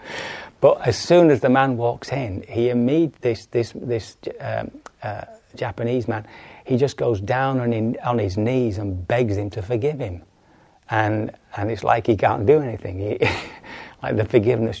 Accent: British